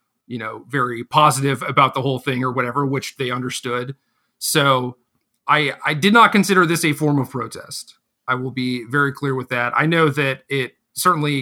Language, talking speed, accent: English, 190 wpm, American